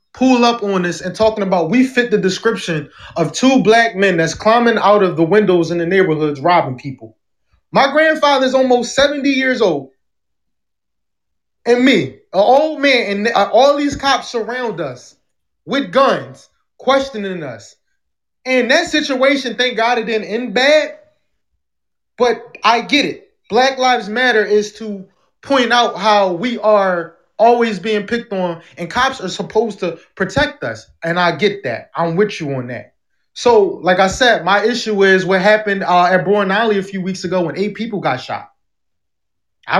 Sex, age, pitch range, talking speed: male, 20-39, 185-260 Hz, 170 wpm